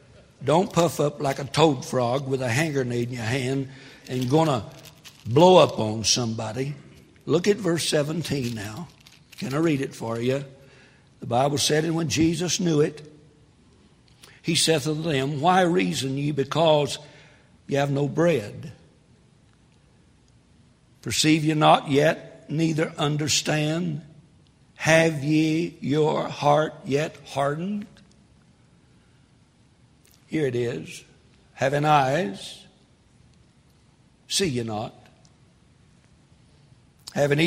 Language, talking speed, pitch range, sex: English, 115 wpm, 130-160 Hz, male